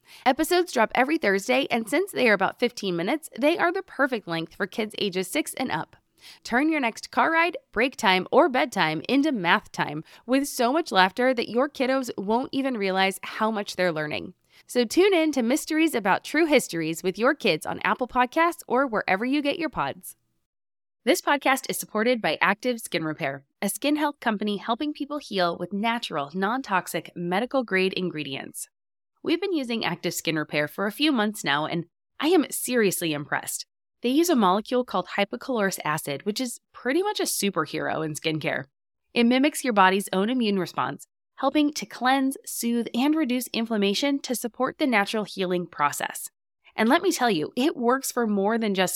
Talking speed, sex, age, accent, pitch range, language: 185 wpm, female, 20-39, American, 185-270 Hz, English